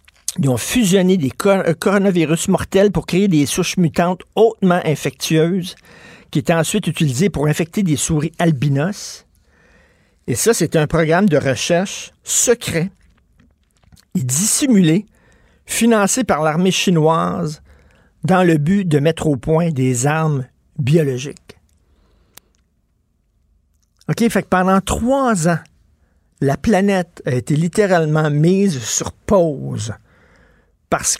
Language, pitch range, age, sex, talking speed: French, 130-185 Hz, 50-69, male, 115 wpm